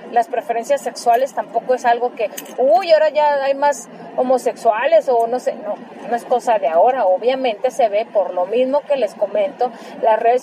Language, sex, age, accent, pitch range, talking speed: Spanish, female, 30-49, Mexican, 230-290 Hz, 190 wpm